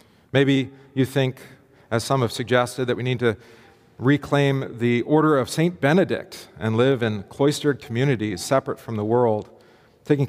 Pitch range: 115-140 Hz